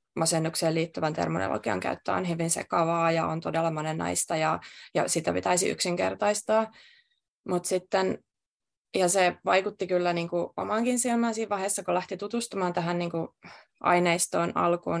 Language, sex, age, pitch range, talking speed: Finnish, female, 20-39, 170-185 Hz, 135 wpm